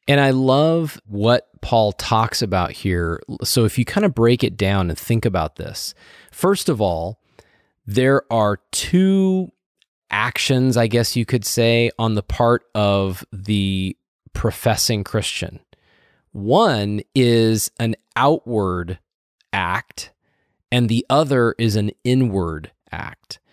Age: 20-39